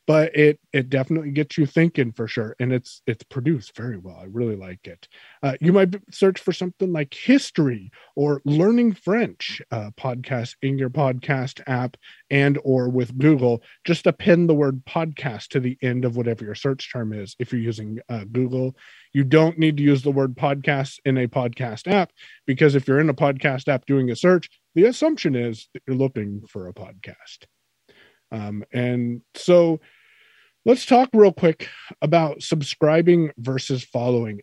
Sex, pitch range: male, 125-170 Hz